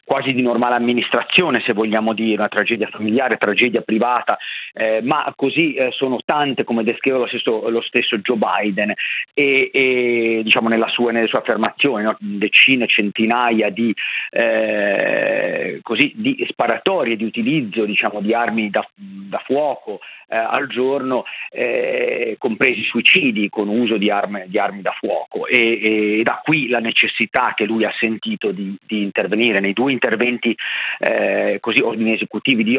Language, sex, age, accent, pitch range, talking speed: Italian, male, 40-59, native, 110-130 Hz, 155 wpm